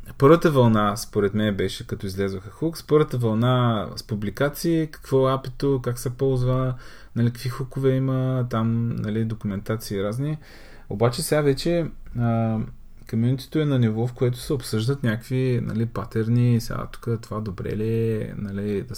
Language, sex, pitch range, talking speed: Bulgarian, male, 110-130 Hz, 155 wpm